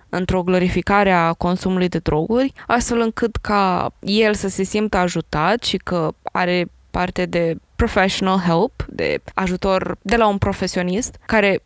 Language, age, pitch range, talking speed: Romanian, 20-39, 185-225 Hz, 145 wpm